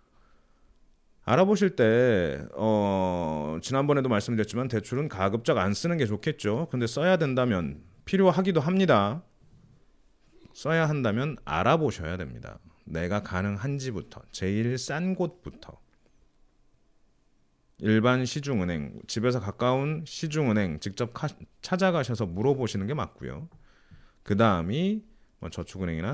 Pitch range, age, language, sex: 95-150 Hz, 30-49, Korean, male